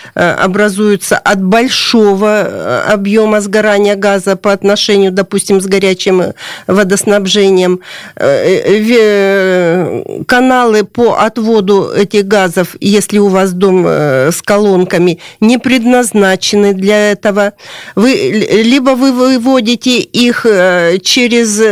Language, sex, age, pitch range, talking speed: Russian, female, 50-69, 190-225 Hz, 90 wpm